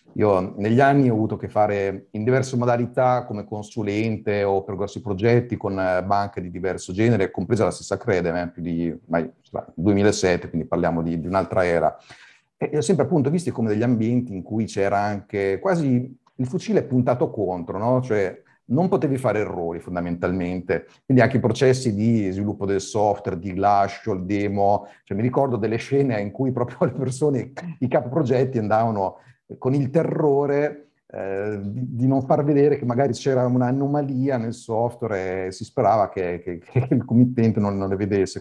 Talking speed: 175 wpm